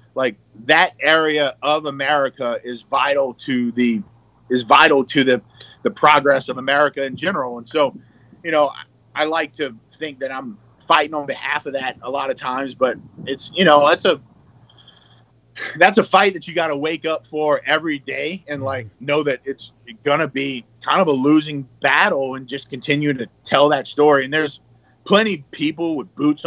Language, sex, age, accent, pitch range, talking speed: English, male, 30-49, American, 130-155 Hz, 190 wpm